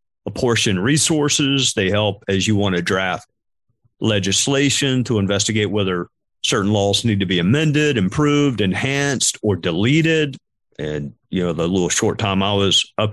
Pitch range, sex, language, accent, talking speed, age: 95-125 Hz, male, English, American, 150 wpm, 50-69